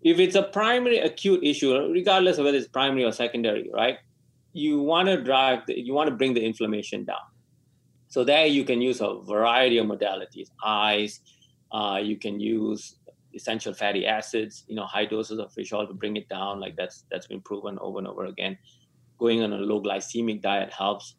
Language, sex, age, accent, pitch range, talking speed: English, male, 30-49, Indian, 105-130 Hz, 200 wpm